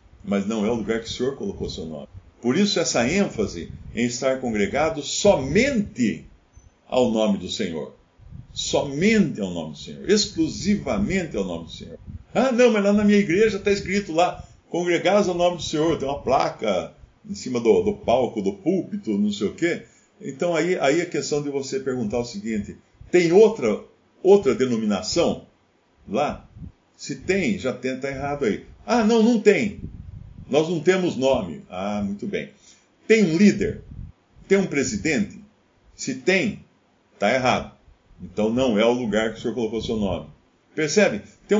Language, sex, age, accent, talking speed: Portuguese, male, 50-69, Brazilian, 170 wpm